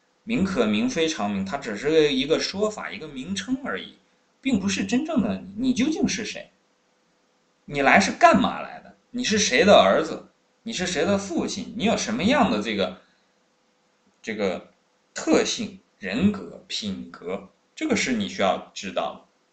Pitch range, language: 155-230 Hz, Chinese